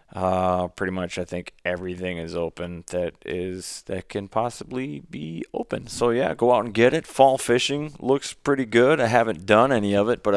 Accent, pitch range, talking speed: American, 90-110 Hz, 195 wpm